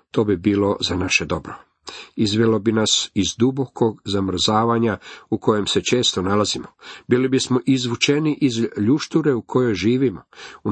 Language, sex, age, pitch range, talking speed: Croatian, male, 50-69, 105-135 Hz, 145 wpm